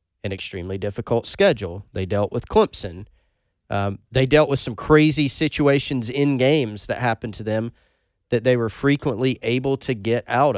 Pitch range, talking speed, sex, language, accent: 95-130 Hz, 165 wpm, male, English, American